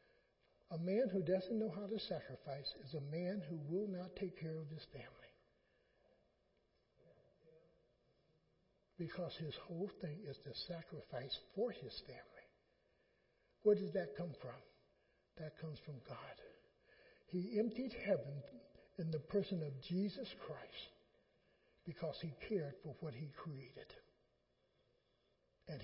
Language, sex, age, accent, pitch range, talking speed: English, male, 60-79, American, 155-230 Hz, 130 wpm